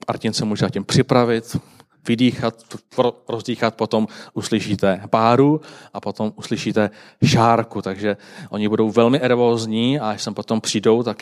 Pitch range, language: 110-135 Hz, Czech